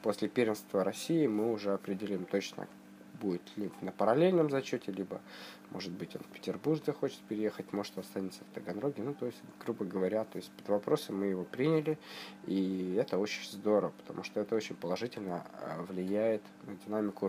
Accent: native